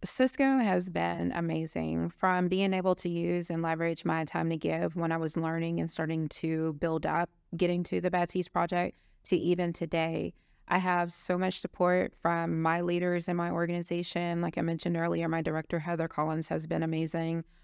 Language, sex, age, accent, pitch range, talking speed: English, female, 20-39, American, 165-185 Hz, 185 wpm